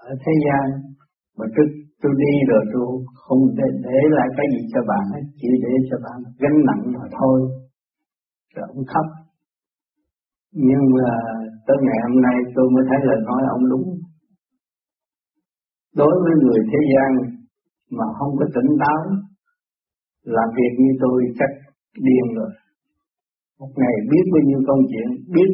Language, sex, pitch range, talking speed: Vietnamese, male, 125-150 Hz, 160 wpm